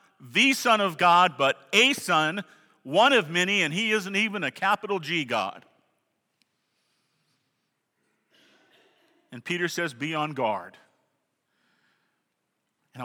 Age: 50-69